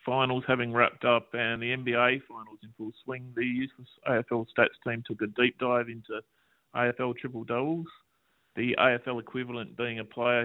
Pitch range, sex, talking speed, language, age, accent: 110-125 Hz, male, 165 wpm, English, 30-49, Australian